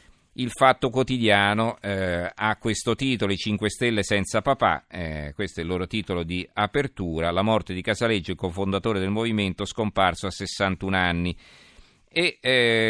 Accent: native